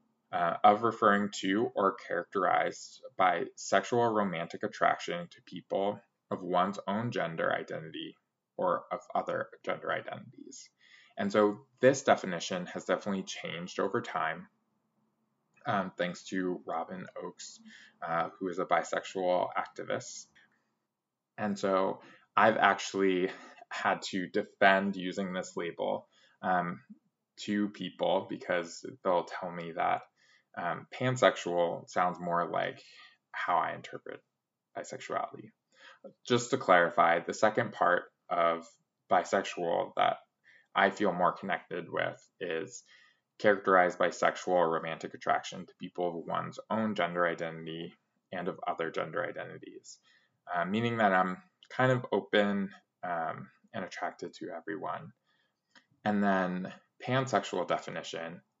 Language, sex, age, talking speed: English, male, 20-39, 120 wpm